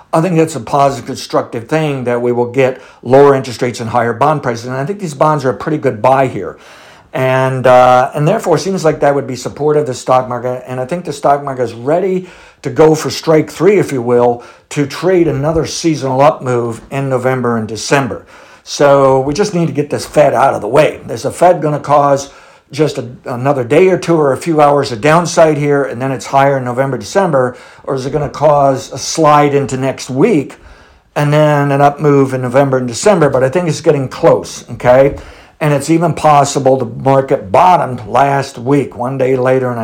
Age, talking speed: 60-79, 225 wpm